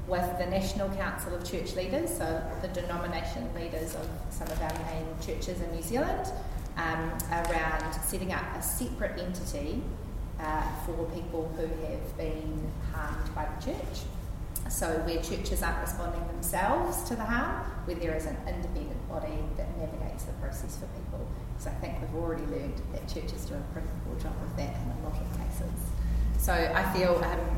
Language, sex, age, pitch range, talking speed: English, female, 30-49, 155-195 Hz, 180 wpm